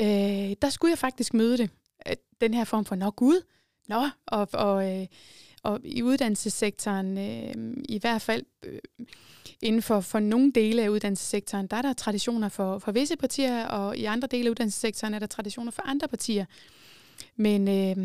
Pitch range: 205-245 Hz